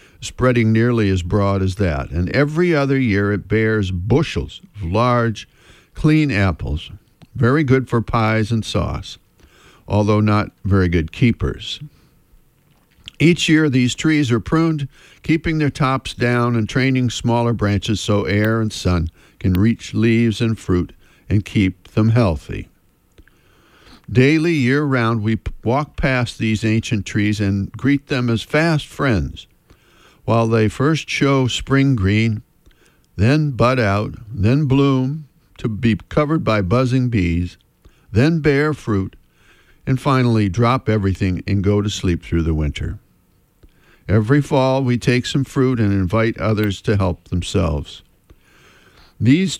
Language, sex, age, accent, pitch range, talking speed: English, male, 60-79, American, 100-135 Hz, 135 wpm